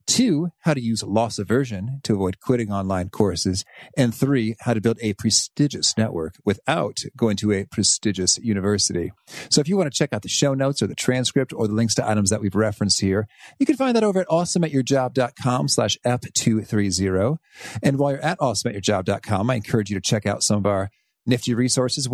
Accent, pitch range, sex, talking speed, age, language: American, 105-135 Hz, male, 195 wpm, 40-59, English